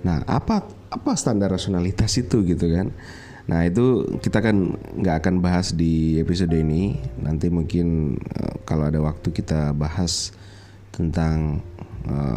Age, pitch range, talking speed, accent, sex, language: 30-49, 90-105 Hz, 130 wpm, native, male, Indonesian